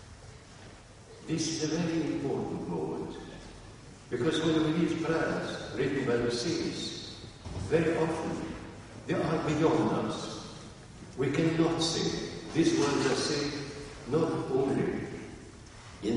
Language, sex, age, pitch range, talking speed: English, male, 60-79, 110-145 Hz, 115 wpm